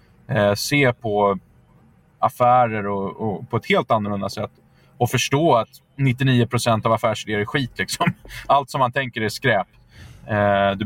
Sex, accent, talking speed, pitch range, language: male, native, 145 wpm, 110-135 Hz, Swedish